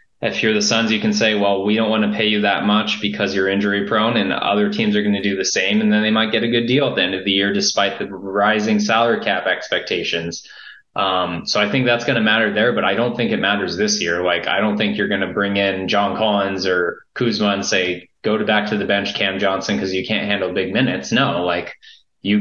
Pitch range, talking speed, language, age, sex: 100-110 Hz, 260 wpm, English, 20-39, male